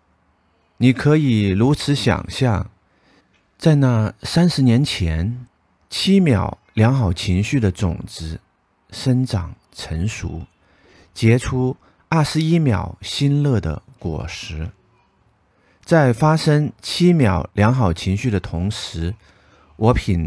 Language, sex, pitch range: Chinese, male, 90-125 Hz